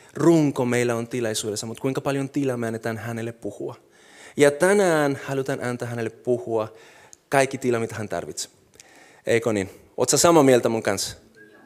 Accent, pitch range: native, 120-155 Hz